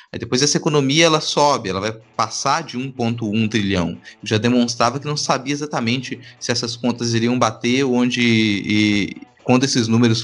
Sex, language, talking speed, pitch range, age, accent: male, Portuguese, 170 wpm, 105-150 Hz, 20-39, Brazilian